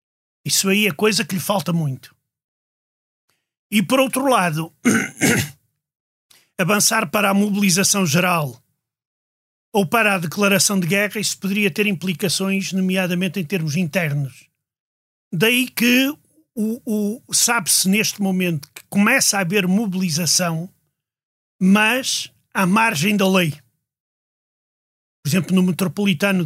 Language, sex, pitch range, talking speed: Portuguese, male, 155-200 Hz, 115 wpm